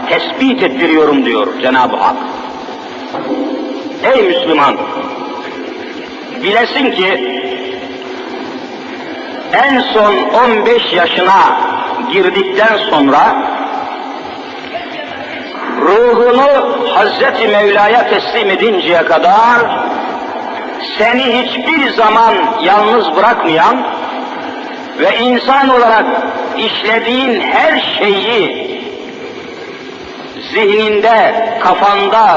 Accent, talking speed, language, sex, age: native, 65 wpm, Turkish, male, 50-69